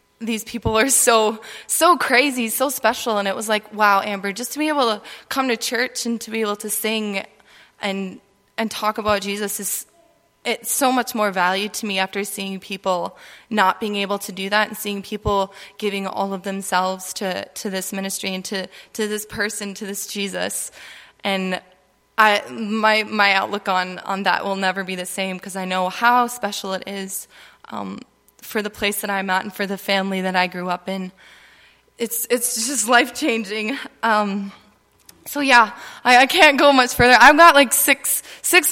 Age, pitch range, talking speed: 20-39, 195-240 Hz, 190 wpm